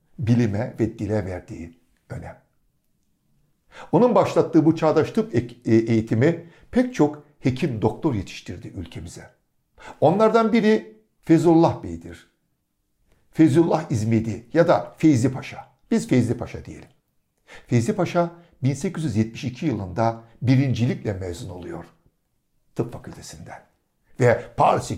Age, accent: 60-79, native